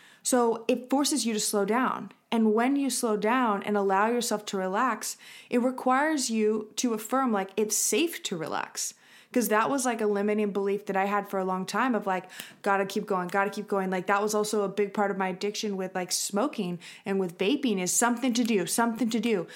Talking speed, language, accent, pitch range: 225 wpm, English, American, 195-235 Hz